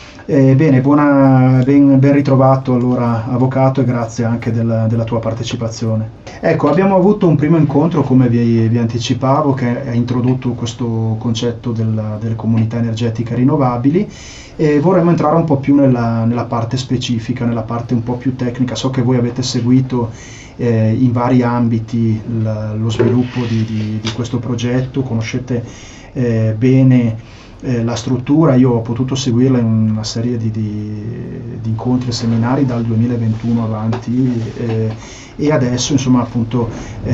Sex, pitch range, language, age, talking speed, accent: male, 115-130 Hz, Italian, 30-49, 150 wpm, native